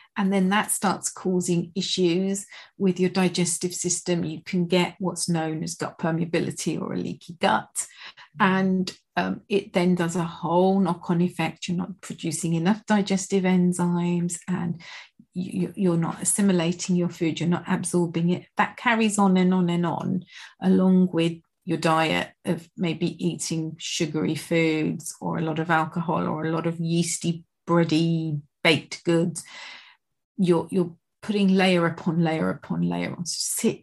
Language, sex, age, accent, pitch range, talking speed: English, female, 40-59, British, 165-190 Hz, 155 wpm